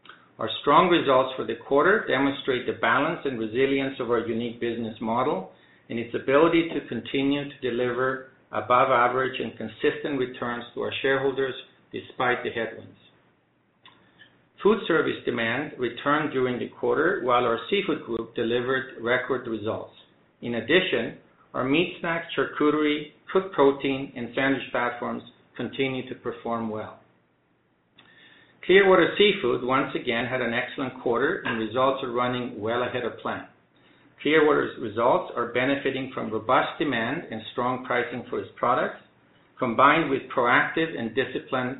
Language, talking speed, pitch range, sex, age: English, 140 wpm, 115-140 Hz, male, 50-69